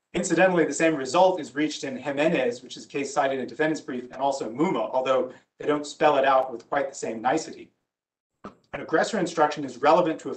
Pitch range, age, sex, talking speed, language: 130-160 Hz, 40-59, male, 220 wpm, English